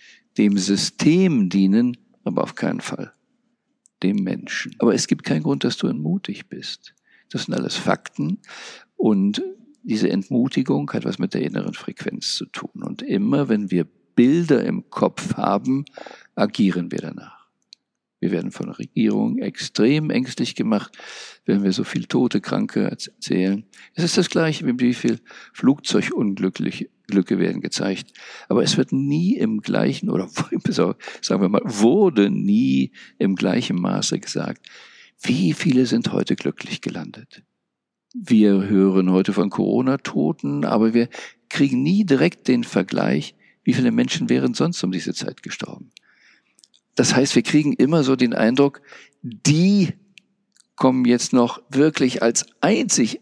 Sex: male